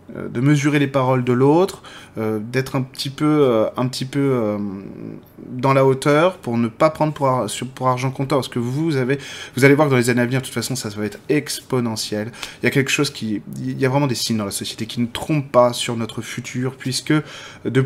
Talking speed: 245 wpm